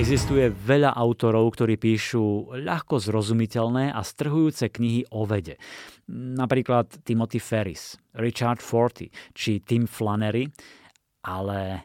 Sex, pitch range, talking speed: male, 110-130 Hz, 105 wpm